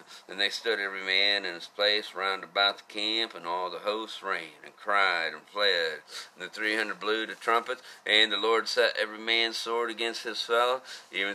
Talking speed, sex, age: 205 wpm, male, 50-69